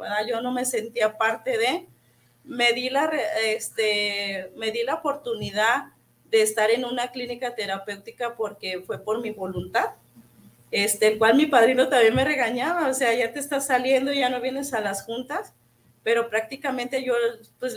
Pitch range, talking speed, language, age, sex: 215-275 Hz, 165 wpm, Spanish, 30-49, female